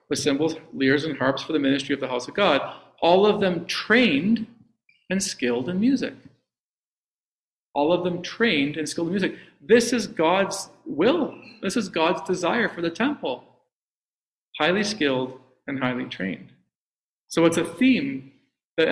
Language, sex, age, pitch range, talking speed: English, male, 40-59, 135-180 Hz, 160 wpm